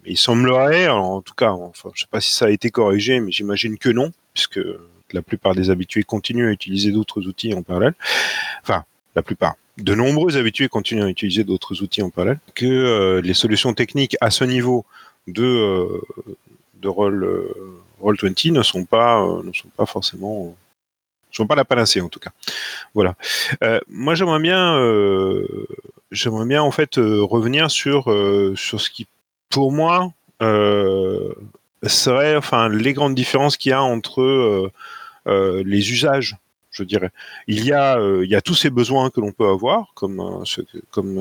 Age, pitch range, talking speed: 40-59, 95-125 Hz, 175 wpm